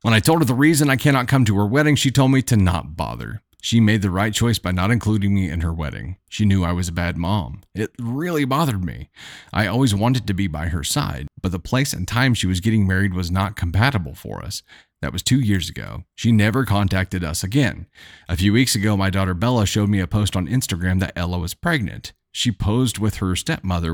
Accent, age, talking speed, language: American, 40-59, 240 wpm, English